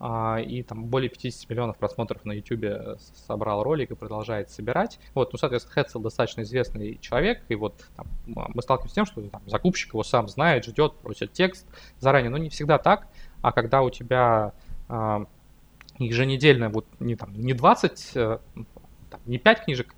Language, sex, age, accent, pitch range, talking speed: Russian, male, 20-39, native, 105-125 Hz, 170 wpm